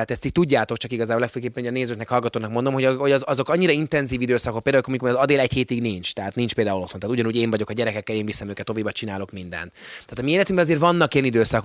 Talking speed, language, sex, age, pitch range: 245 wpm, Hungarian, male, 20-39, 115-150 Hz